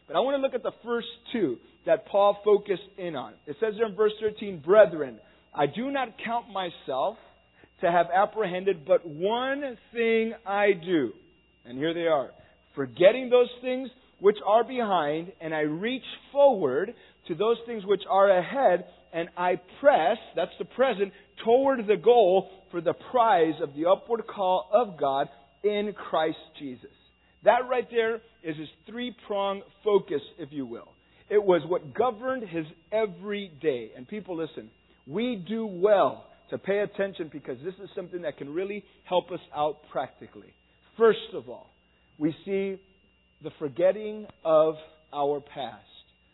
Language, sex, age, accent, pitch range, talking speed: English, male, 40-59, American, 160-230 Hz, 160 wpm